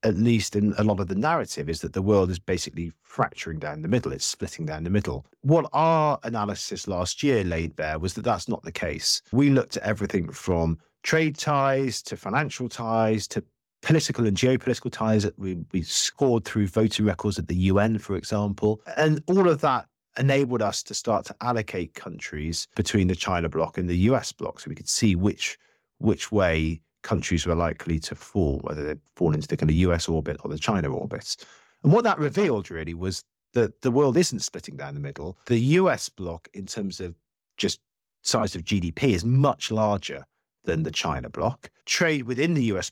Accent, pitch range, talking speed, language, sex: British, 85-120 Hz, 200 wpm, English, male